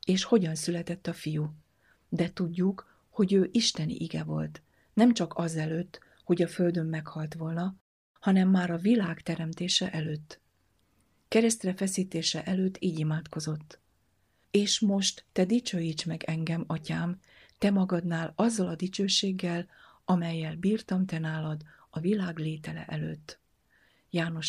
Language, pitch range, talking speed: Hungarian, 155-190 Hz, 130 wpm